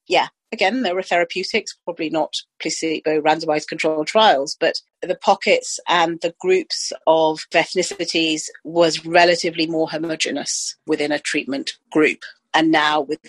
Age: 40-59